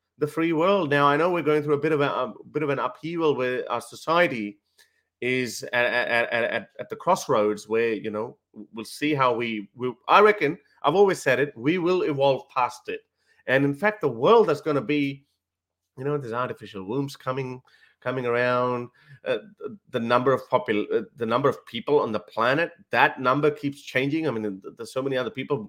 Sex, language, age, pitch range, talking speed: male, English, 30-49, 125-200 Hz, 205 wpm